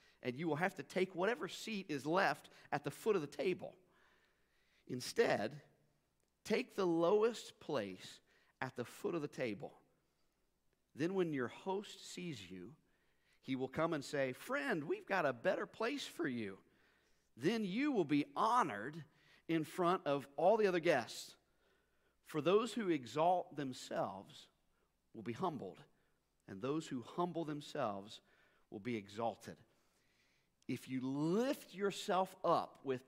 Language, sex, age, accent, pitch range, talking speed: English, male, 50-69, American, 140-210 Hz, 145 wpm